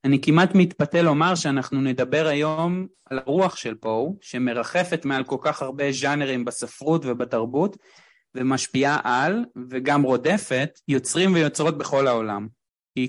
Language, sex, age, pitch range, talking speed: Hebrew, male, 30-49, 125-160 Hz, 130 wpm